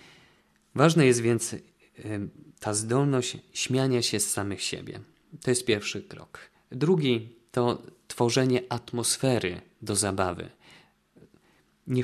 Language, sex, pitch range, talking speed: Polish, male, 100-125 Hz, 105 wpm